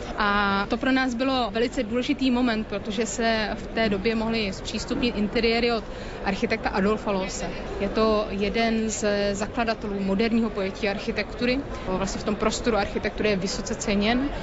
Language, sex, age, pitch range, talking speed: Slovak, female, 30-49, 200-230 Hz, 150 wpm